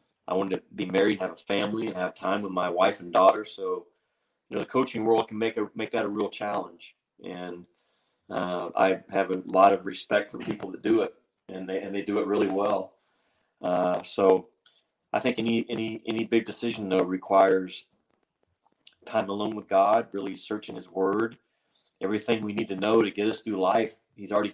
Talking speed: 200 wpm